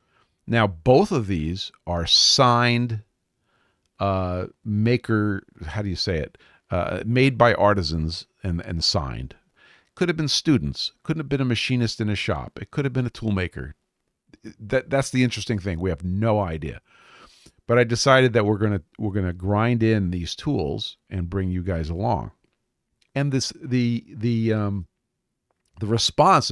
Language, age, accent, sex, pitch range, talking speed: English, 50-69, American, male, 90-120 Hz, 160 wpm